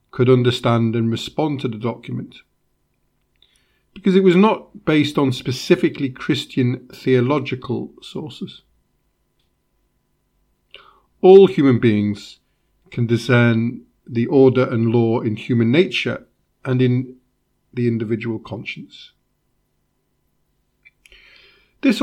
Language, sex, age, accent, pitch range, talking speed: English, male, 50-69, British, 125-175 Hz, 95 wpm